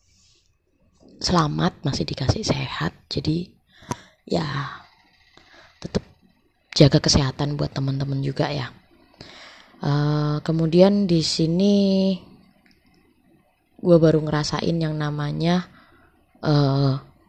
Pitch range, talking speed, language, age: 145-175 Hz, 80 wpm, Indonesian, 20-39